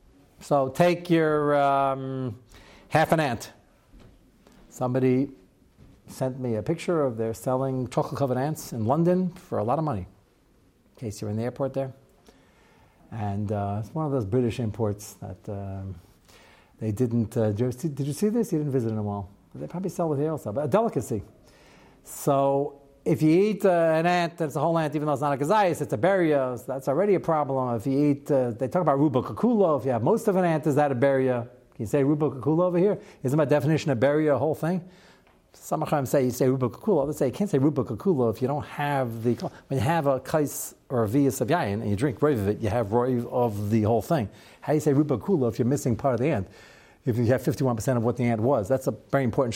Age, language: 60-79, English